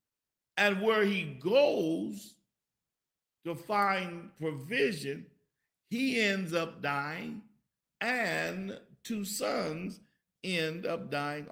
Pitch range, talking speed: 155-205 Hz, 90 wpm